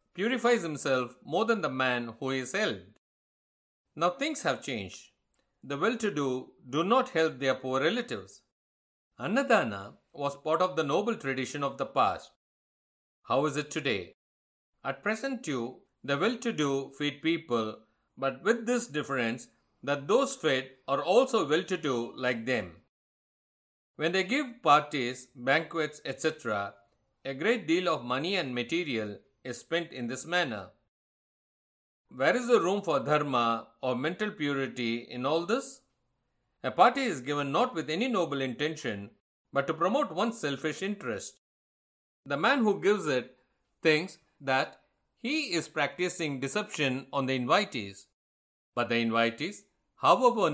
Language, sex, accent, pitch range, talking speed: English, male, Indian, 125-170 Hz, 140 wpm